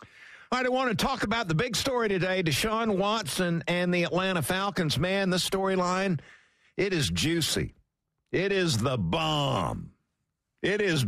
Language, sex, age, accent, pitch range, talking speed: English, male, 60-79, American, 140-190 Hz, 155 wpm